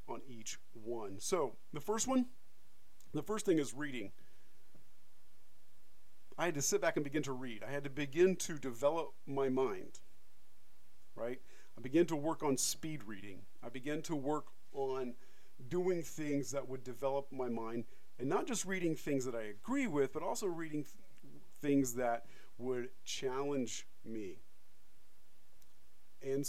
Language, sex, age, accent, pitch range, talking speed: English, male, 40-59, American, 120-155 Hz, 150 wpm